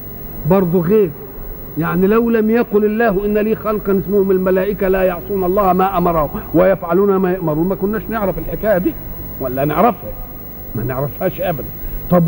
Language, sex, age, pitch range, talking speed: Arabic, male, 50-69, 175-220 Hz, 150 wpm